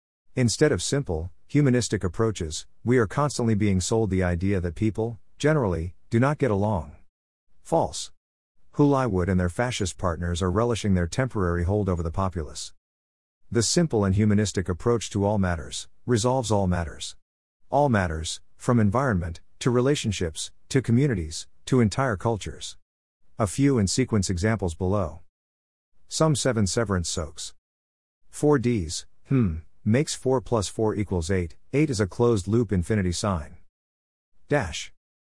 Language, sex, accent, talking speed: English, male, American, 140 wpm